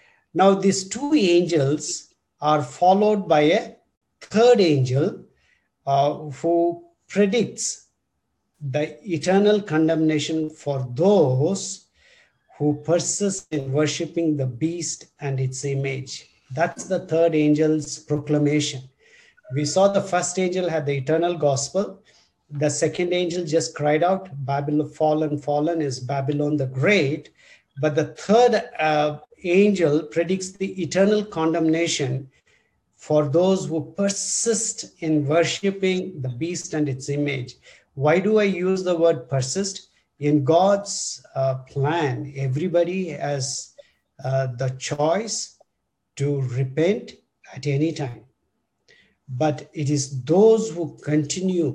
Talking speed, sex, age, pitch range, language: 115 wpm, male, 50-69, 140-180 Hz, English